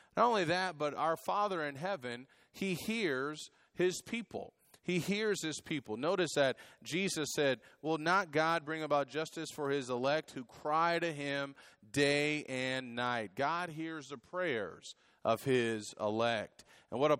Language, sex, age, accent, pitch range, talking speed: English, male, 30-49, American, 130-170 Hz, 160 wpm